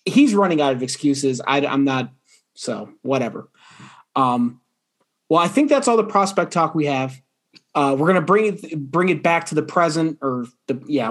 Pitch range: 140-180 Hz